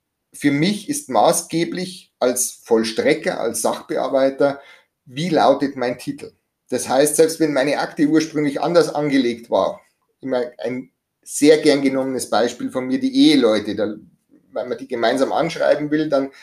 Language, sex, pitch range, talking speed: German, male, 125-150 Hz, 145 wpm